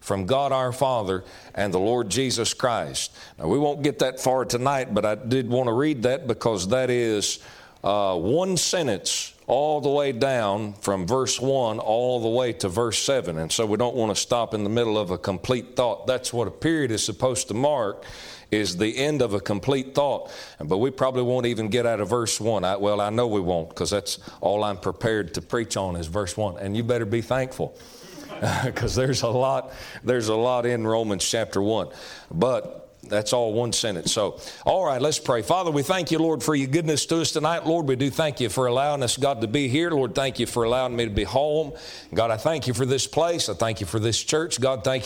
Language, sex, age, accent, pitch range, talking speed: English, male, 40-59, American, 105-135 Hz, 230 wpm